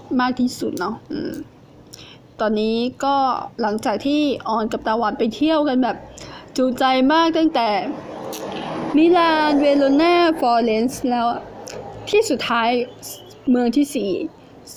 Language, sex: Thai, female